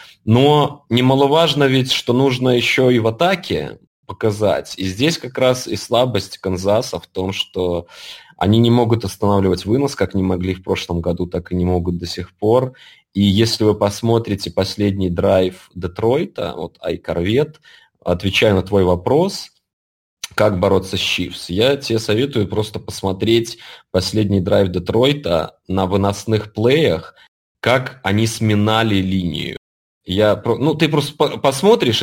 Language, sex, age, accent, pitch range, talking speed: Russian, male, 20-39, native, 95-125 Hz, 140 wpm